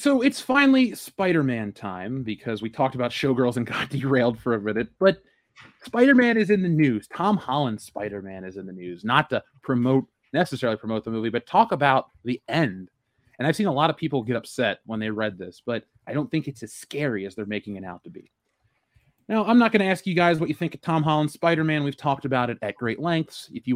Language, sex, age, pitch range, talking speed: English, male, 30-49, 115-165 Hz, 230 wpm